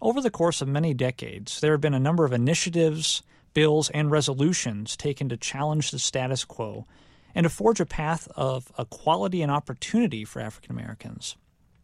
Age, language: 40-59, English